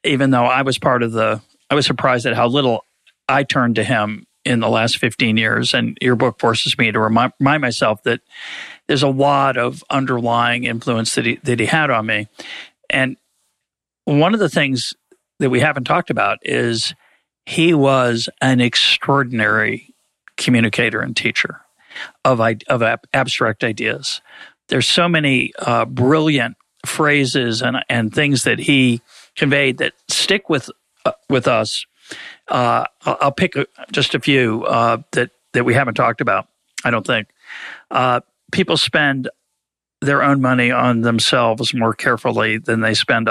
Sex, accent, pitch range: male, American, 115-140 Hz